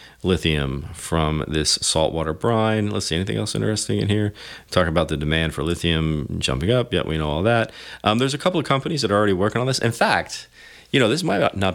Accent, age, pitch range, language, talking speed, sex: American, 40-59, 80-110 Hz, English, 225 wpm, male